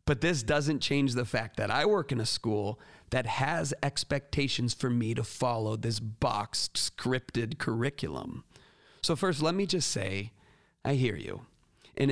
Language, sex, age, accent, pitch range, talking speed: English, male, 40-59, American, 115-150 Hz, 165 wpm